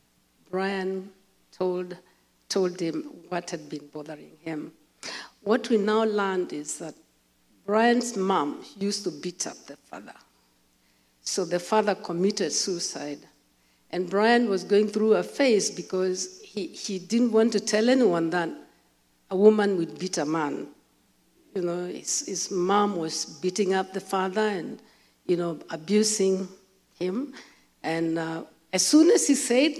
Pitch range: 175-220 Hz